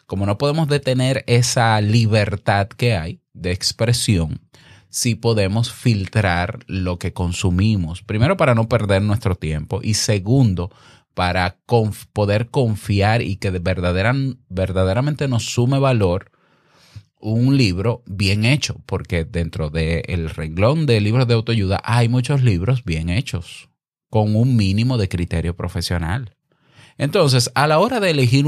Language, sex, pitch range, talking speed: Spanish, male, 90-125 Hz, 140 wpm